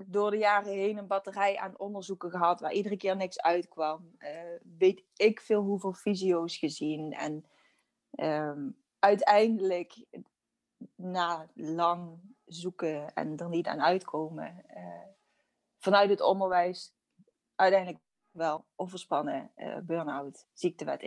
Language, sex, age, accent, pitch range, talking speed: English, female, 20-39, Dutch, 175-210 Hz, 120 wpm